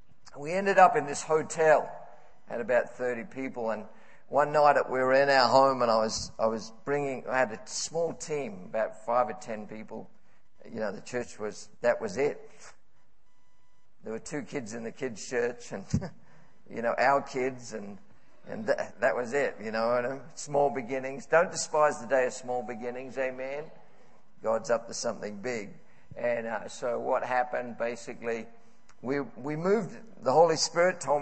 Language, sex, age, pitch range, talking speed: English, male, 50-69, 120-155 Hz, 175 wpm